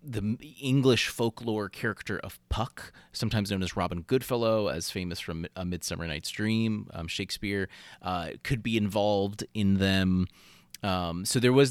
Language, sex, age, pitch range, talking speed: English, male, 30-49, 90-115 Hz, 155 wpm